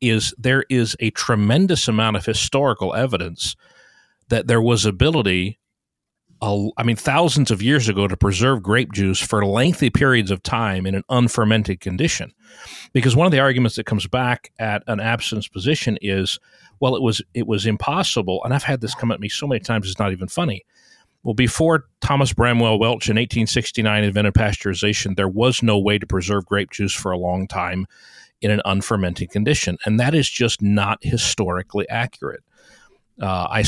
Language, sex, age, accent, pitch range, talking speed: English, male, 40-59, American, 100-120 Hz, 180 wpm